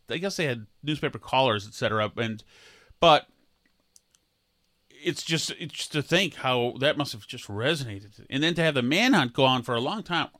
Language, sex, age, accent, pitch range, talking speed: English, male, 30-49, American, 120-175 Hz, 195 wpm